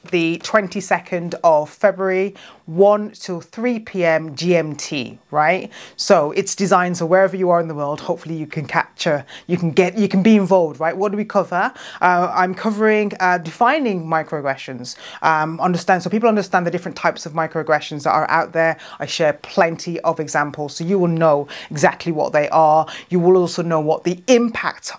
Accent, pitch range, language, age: British, 160-195 Hz, English, 30-49